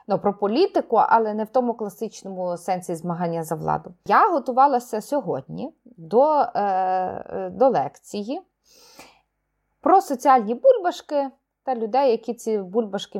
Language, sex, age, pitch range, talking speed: Ukrainian, female, 30-49, 195-275 Hz, 125 wpm